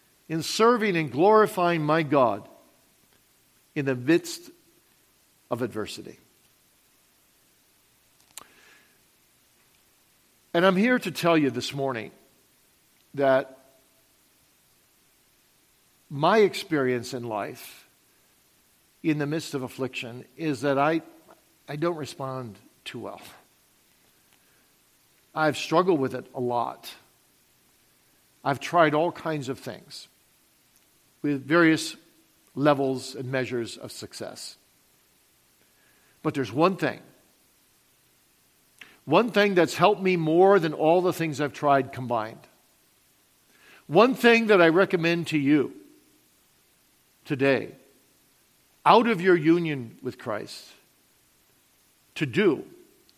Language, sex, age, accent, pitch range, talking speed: English, male, 50-69, American, 135-185 Hz, 100 wpm